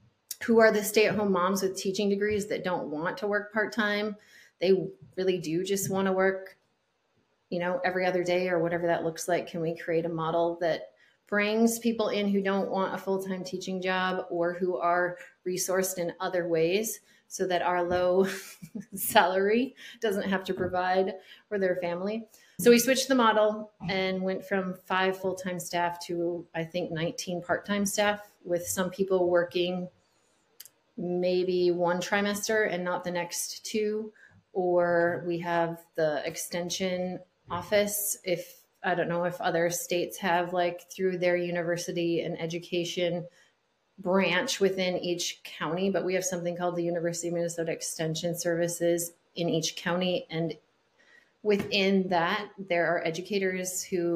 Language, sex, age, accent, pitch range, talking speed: English, female, 30-49, American, 175-195 Hz, 155 wpm